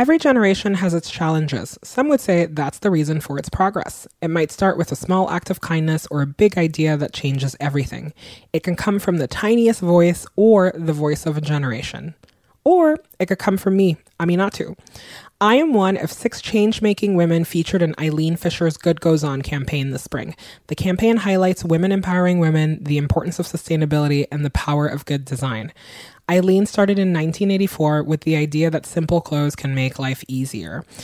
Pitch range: 145-180 Hz